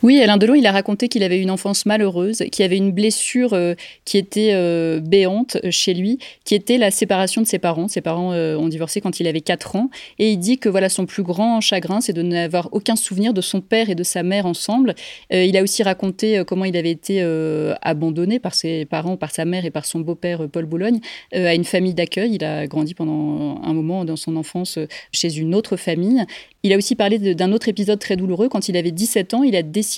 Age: 30-49